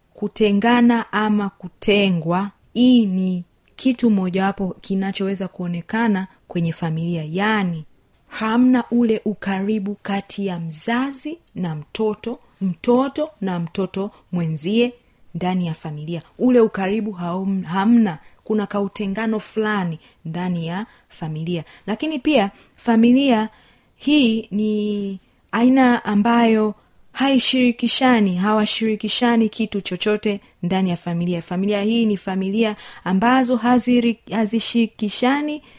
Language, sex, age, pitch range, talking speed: Swahili, female, 30-49, 185-235 Hz, 95 wpm